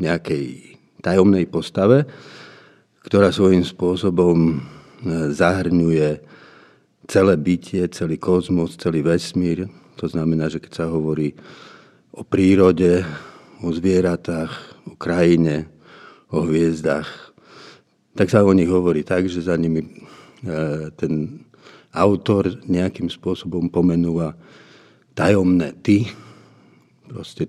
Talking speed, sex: 95 wpm, male